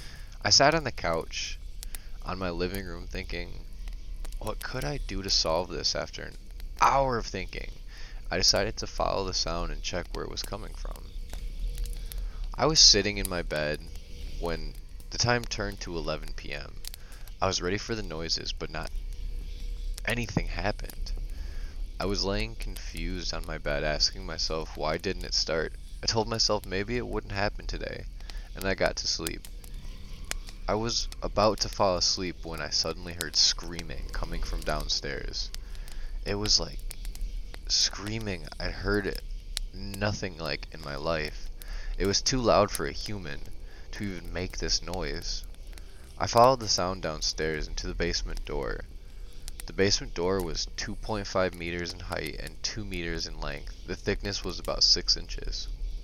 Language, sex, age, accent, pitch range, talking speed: English, male, 20-39, American, 70-95 Hz, 160 wpm